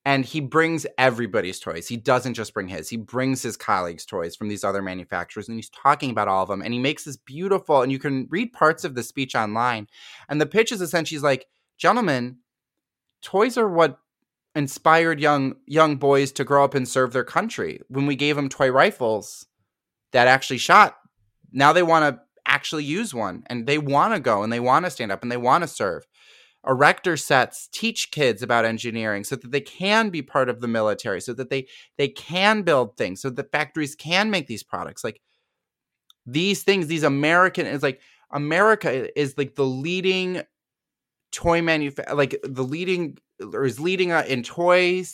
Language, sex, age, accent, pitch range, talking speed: English, male, 20-39, American, 125-165 Hz, 190 wpm